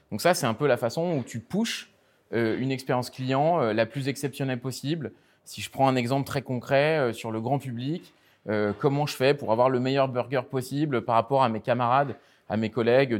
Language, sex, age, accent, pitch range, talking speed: French, male, 20-39, French, 120-150 Hz, 205 wpm